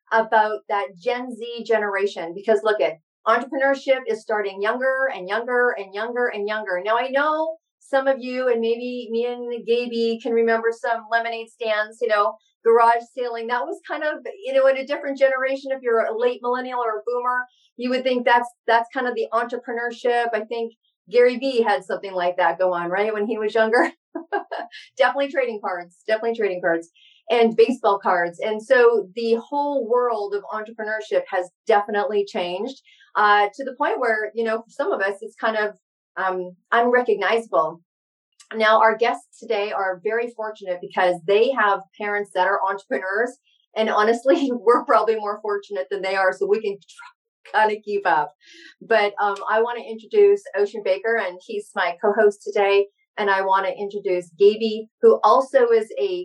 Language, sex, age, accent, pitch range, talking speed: English, female, 40-59, American, 205-245 Hz, 180 wpm